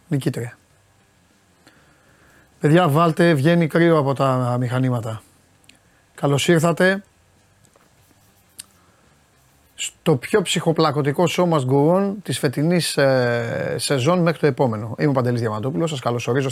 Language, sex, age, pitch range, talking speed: Greek, male, 30-49, 120-150 Hz, 100 wpm